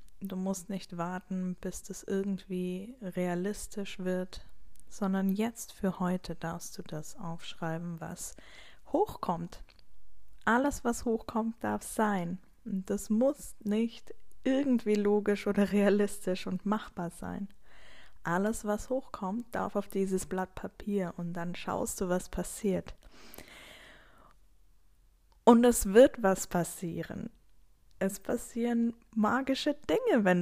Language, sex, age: German, female, 20-39